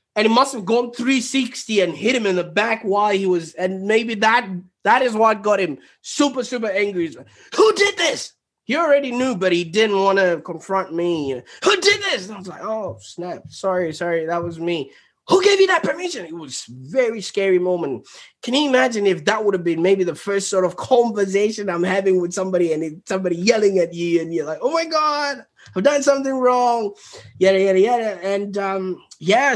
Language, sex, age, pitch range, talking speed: English, male, 20-39, 170-255 Hz, 210 wpm